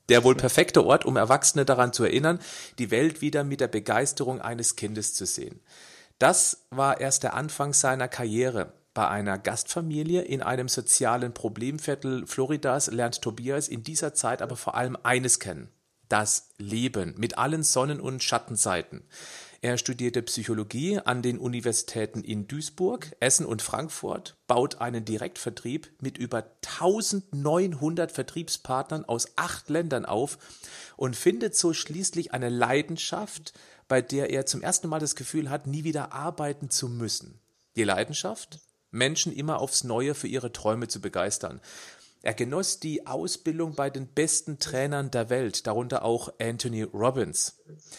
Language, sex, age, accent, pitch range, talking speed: German, male, 40-59, German, 120-155 Hz, 150 wpm